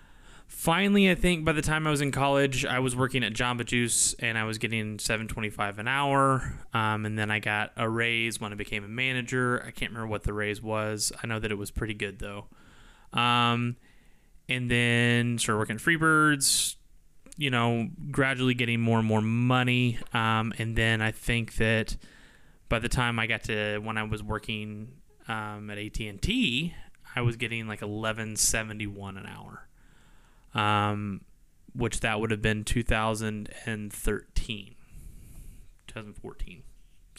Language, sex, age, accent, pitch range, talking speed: English, male, 20-39, American, 110-125 Hz, 165 wpm